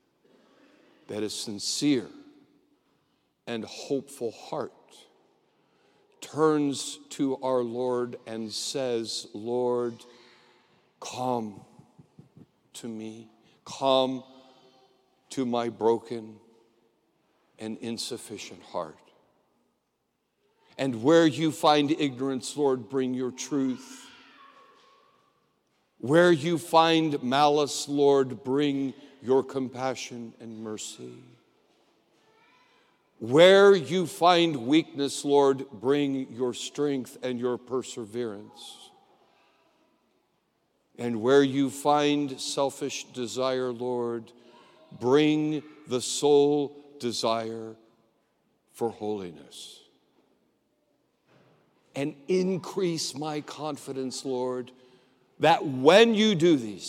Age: 60-79